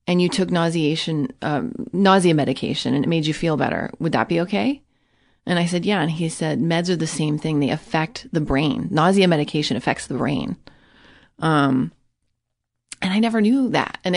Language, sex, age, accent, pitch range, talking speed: English, female, 30-49, American, 160-195 Hz, 190 wpm